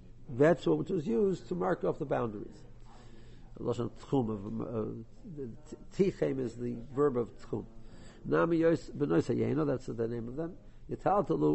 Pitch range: 120-180 Hz